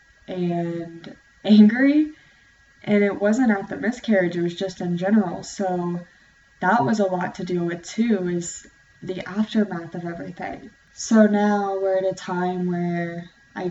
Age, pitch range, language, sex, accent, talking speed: 10-29, 175-195 Hz, English, female, American, 155 wpm